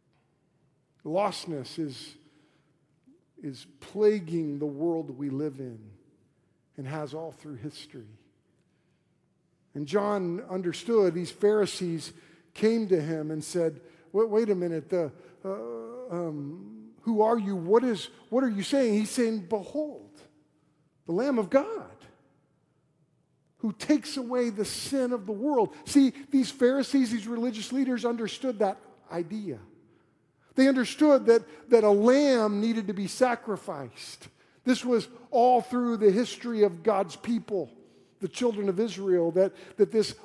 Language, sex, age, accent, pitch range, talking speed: English, male, 50-69, American, 160-230 Hz, 135 wpm